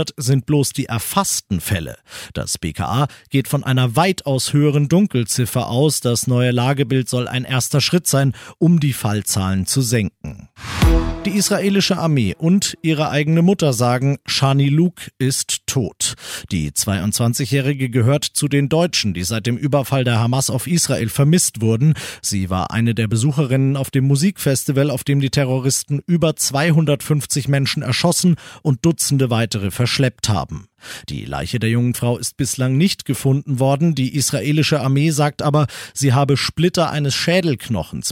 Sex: male